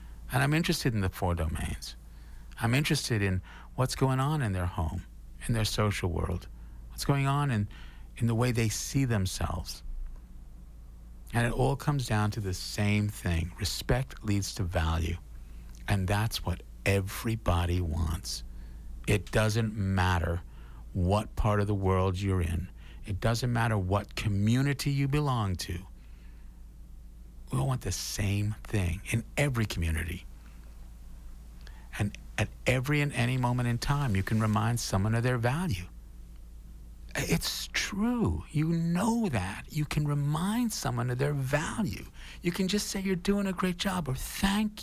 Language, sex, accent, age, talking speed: English, male, American, 50-69, 150 wpm